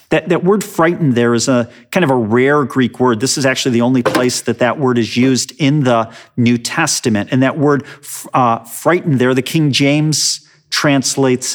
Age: 40-59